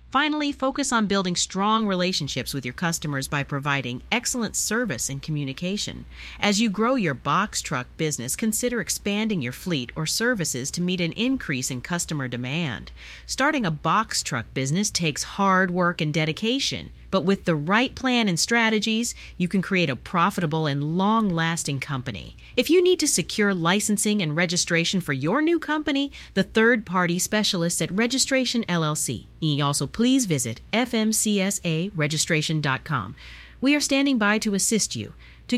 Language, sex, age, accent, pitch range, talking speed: English, female, 40-59, American, 140-220 Hz, 155 wpm